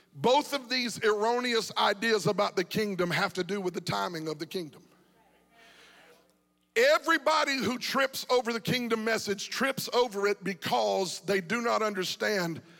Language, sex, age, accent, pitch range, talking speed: English, male, 50-69, American, 210-265 Hz, 150 wpm